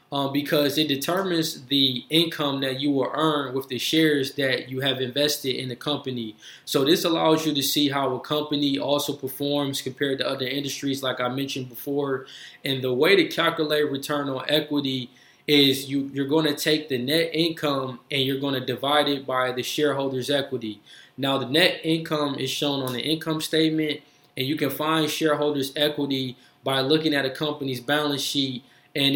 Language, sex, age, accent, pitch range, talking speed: English, male, 20-39, American, 130-150 Hz, 185 wpm